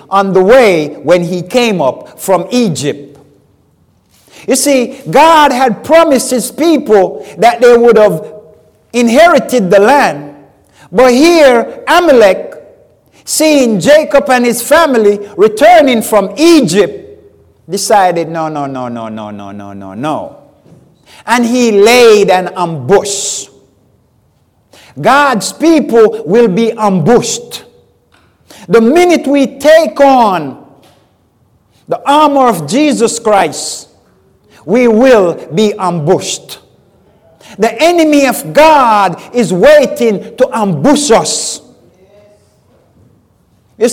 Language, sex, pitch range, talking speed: English, male, 180-275 Hz, 105 wpm